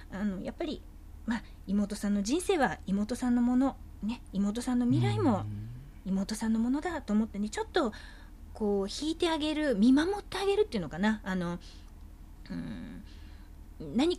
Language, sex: Japanese, female